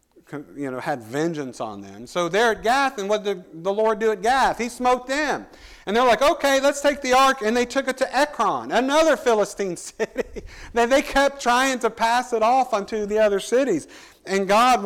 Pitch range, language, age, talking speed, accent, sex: 175-235 Hz, English, 50-69, 205 wpm, American, male